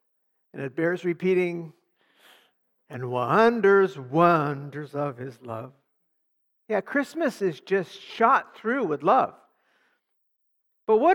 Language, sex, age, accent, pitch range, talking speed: English, male, 60-79, American, 165-230 Hz, 110 wpm